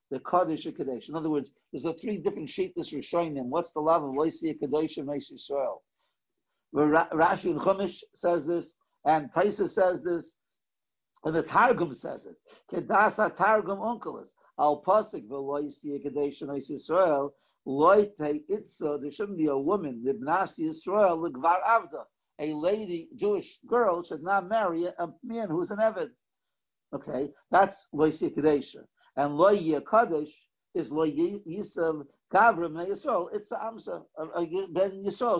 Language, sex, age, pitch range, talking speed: English, male, 60-79, 155-200 Hz, 140 wpm